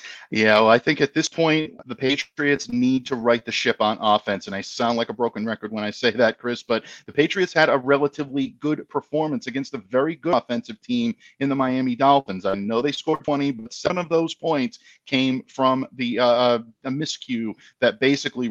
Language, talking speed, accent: English, 210 wpm, American